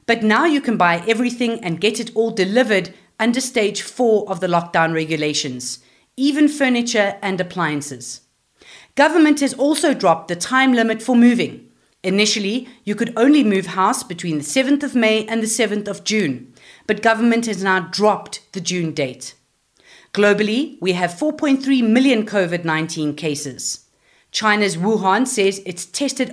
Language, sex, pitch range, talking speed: English, female, 180-240 Hz, 155 wpm